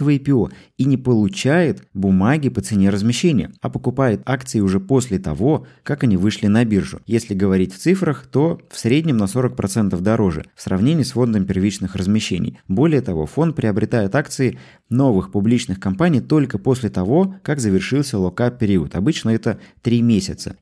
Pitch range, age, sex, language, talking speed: 95-135 Hz, 20-39, male, Russian, 155 wpm